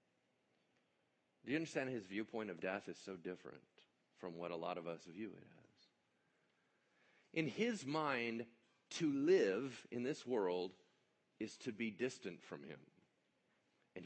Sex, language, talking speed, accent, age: male, English, 145 wpm, American, 40-59